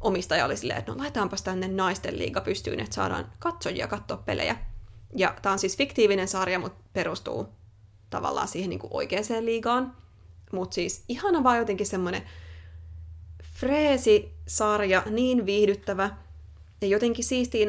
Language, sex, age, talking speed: Finnish, female, 20-39, 130 wpm